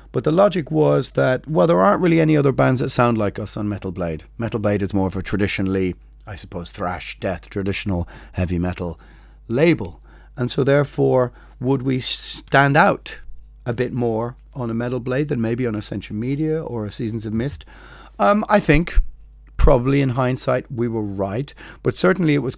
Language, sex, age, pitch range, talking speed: English, male, 30-49, 100-130 Hz, 190 wpm